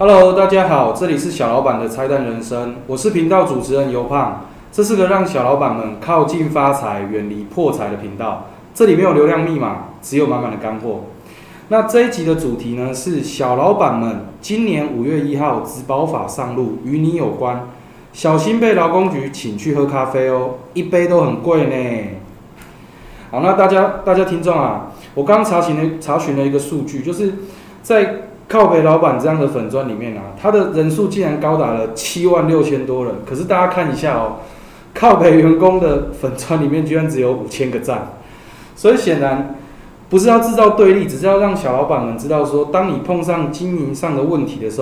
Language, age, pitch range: Chinese, 20-39, 125-180 Hz